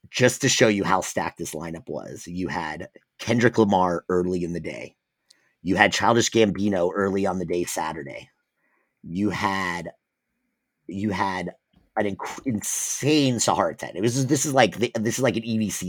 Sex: male